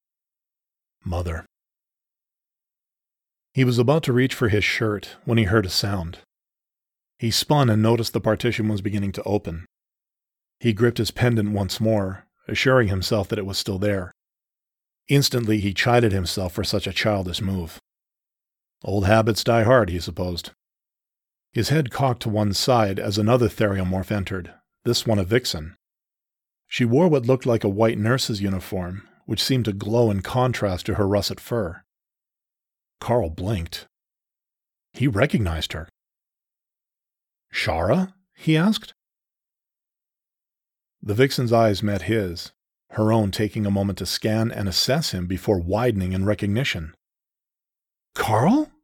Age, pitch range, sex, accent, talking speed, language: 40-59, 95-120 Hz, male, American, 140 wpm, English